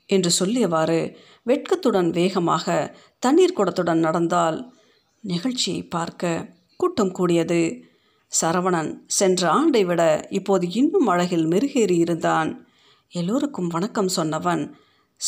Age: 50-69